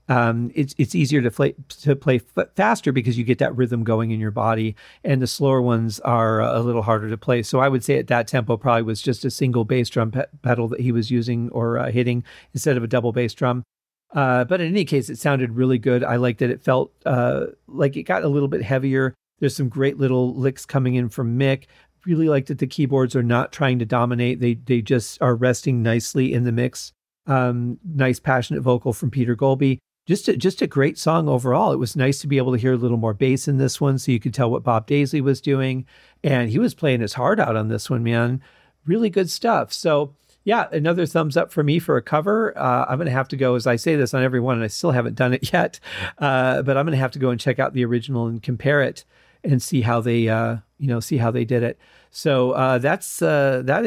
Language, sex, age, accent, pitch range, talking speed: English, male, 40-59, American, 120-145 Hz, 245 wpm